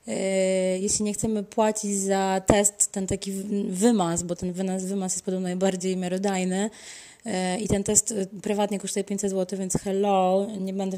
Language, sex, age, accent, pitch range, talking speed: Polish, female, 20-39, native, 180-200 Hz, 150 wpm